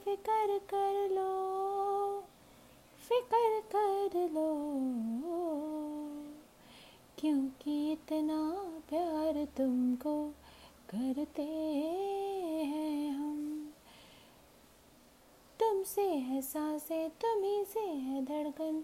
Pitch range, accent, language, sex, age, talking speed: 300-400 Hz, native, Hindi, female, 30-49, 65 wpm